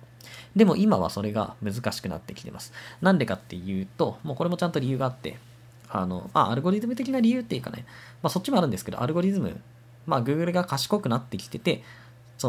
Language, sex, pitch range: Japanese, male, 110-150 Hz